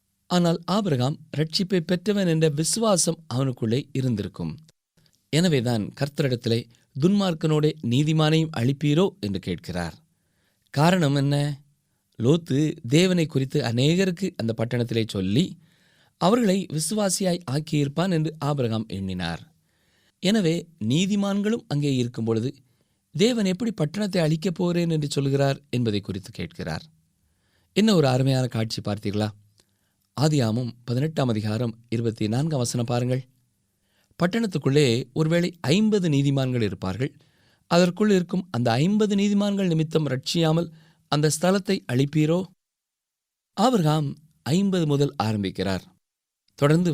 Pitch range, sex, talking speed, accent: 115-165 Hz, male, 95 wpm, native